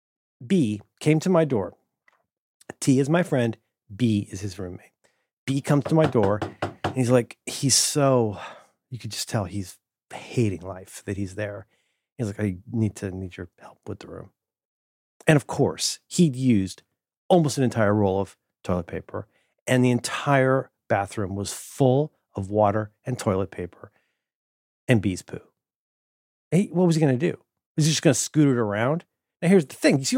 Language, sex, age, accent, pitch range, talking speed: English, male, 40-59, American, 105-170 Hz, 180 wpm